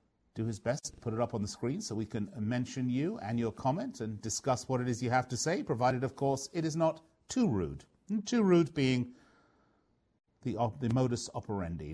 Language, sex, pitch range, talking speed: English, male, 105-145 Hz, 210 wpm